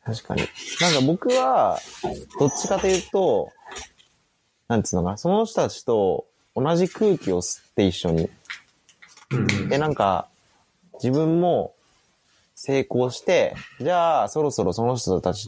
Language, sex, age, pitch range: Japanese, male, 20-39, 100-135 Hz